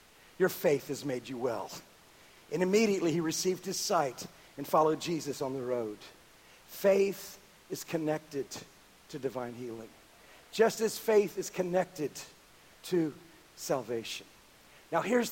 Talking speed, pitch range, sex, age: 130 wpm, 160-215 Hz, male, 50-69